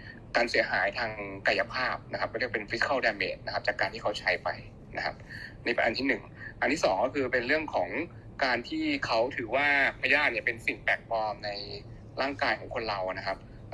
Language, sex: Thai, male